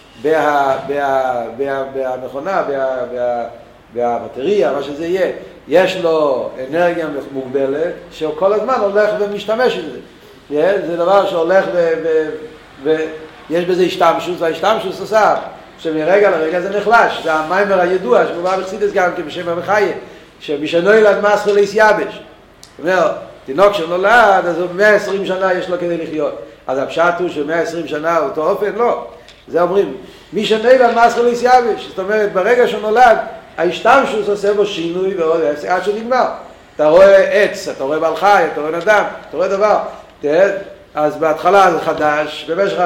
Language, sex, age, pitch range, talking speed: Hebrew, male, 60-79, 155-200 Hz, 130 wpm